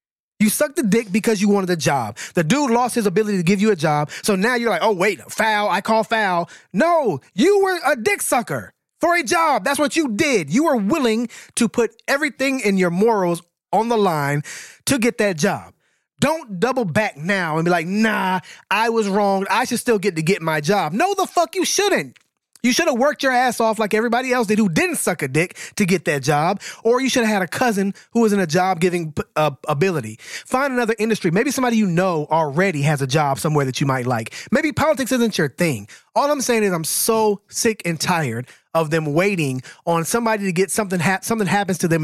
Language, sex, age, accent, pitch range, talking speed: English, male, 20-39, American, 175-240 Hz, 230 wpm